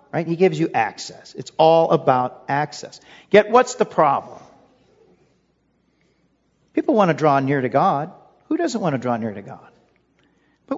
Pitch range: 145-230 Hz